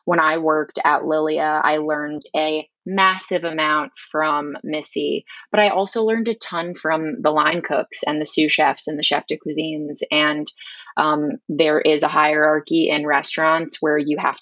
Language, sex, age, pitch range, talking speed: English, female, 20-39, 155-170 Hz, 175 wpm